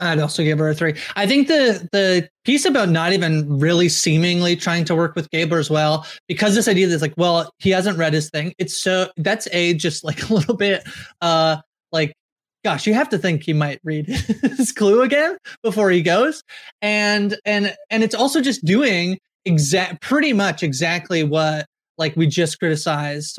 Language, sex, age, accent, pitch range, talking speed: English, male, 20-39, American, 155-200 Hz, 190 wpm